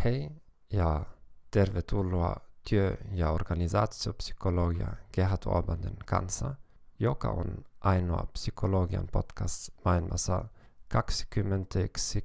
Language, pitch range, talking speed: English, 90-105 Hz, 75 wpm